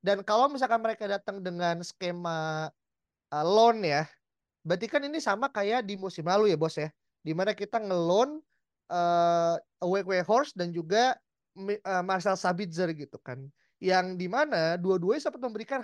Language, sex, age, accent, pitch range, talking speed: Indonesian, male, 20-39, native, 165-200 Hz, 160 wpm